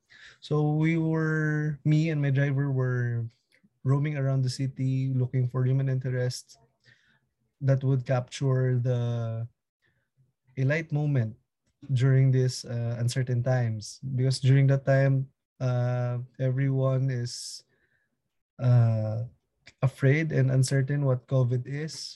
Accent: Filipino